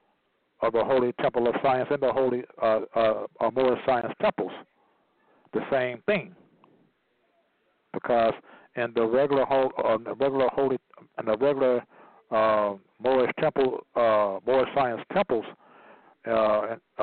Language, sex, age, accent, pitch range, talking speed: English, male, 60-79, American, 115-155 Hz, 125 wpm